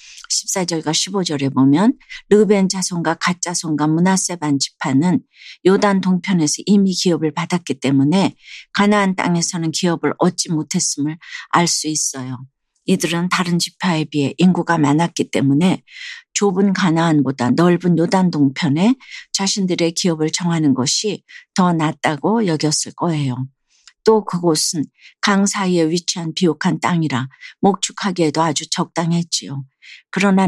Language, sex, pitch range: Korean, female, 150-190 Hz